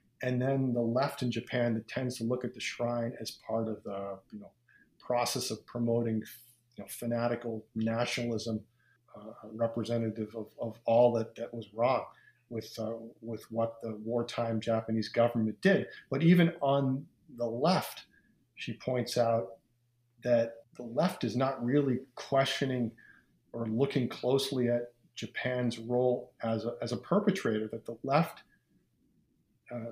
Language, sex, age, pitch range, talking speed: English, male, 40-59, 115-130 Hz, 150 wpm